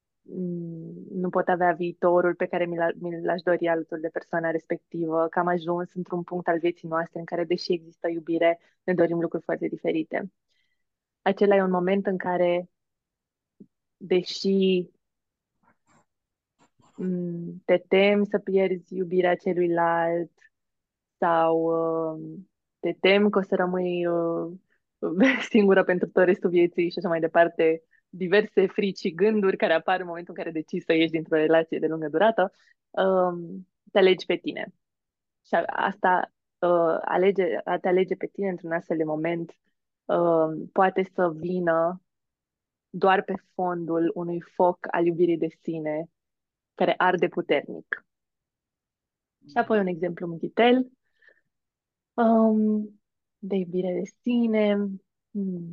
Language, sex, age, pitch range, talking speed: Romanian, female, 20-39, 170-190 Hz, 130 wpm